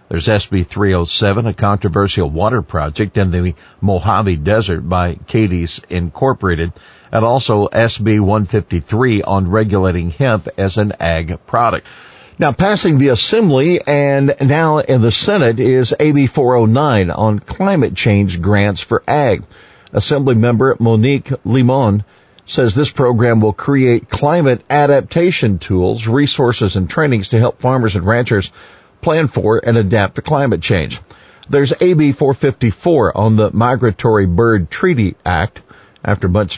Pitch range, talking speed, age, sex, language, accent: 95-125 Hz, 130 wpm, 50-69, male, English, American